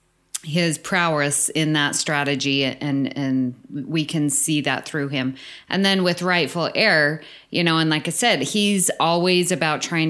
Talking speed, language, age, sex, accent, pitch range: 165 wpm, English, 30-49, female, American, 140-165 Hz